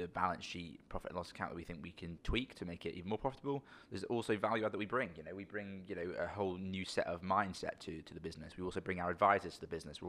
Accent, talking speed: British, 295 wpm